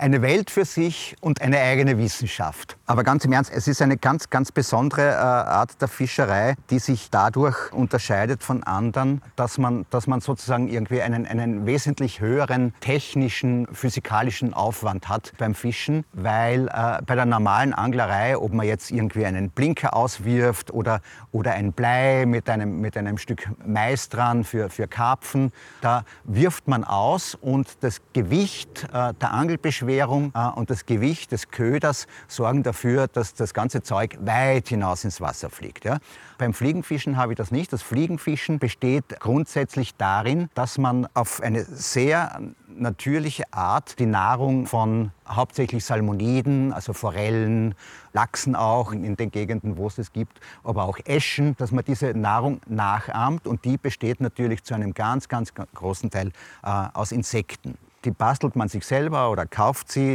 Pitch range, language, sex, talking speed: 110-135 Hz, German, male, 160 wpm